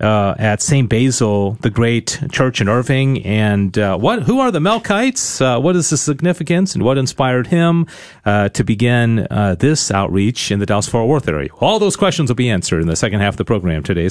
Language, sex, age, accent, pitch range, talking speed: English, male, 40-59, American, 105-155 Hz, 215 wpm